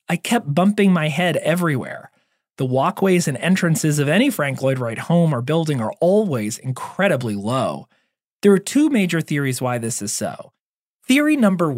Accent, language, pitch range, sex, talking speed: American, English, 125-200 Hz, male, 170 wpm